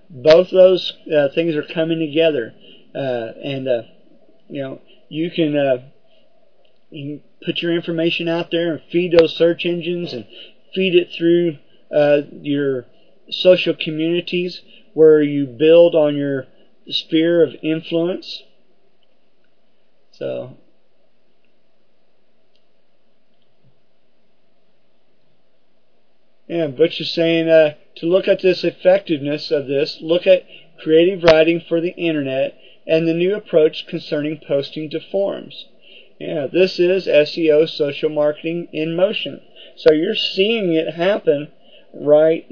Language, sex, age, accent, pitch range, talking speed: English, male, 40-59, American, 150-175 Hz, 115 wpm